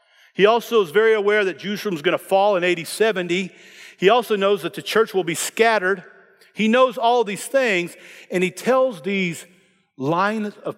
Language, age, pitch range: English, 50-69, 160-215 Hz